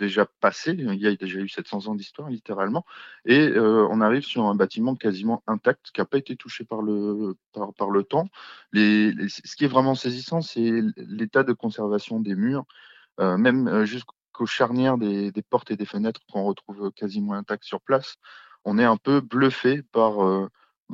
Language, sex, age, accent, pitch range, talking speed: French, male, 20-39, French, 100-120 Hz, 180 wpm